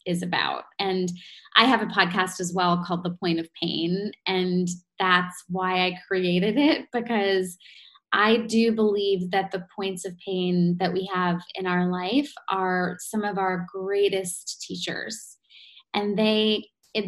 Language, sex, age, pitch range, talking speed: English, female, 20-39, 185-255 Hz, 155 wpm